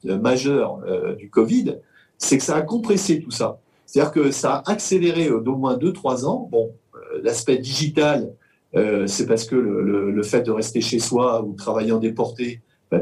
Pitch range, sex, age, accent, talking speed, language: 115-160 Hz, male, 50-69, French, 200 wpm, French